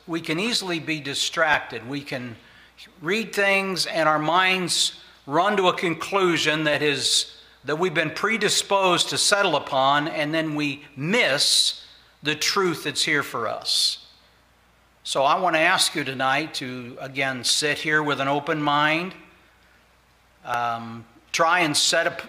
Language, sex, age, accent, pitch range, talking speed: English, male, 60-79, American, 145-170 Hz, 150 wpm